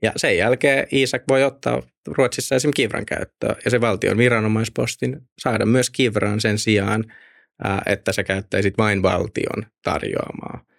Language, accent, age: Finnish, native, 20-39